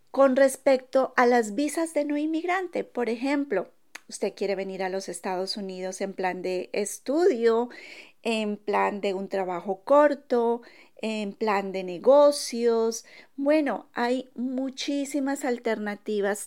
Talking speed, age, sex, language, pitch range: 130 wpm, 40-59, female, Spanish, 205-265 Hz